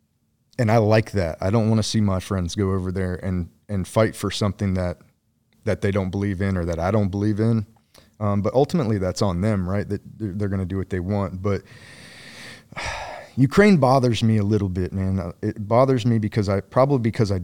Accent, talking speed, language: American, 215 wpm, English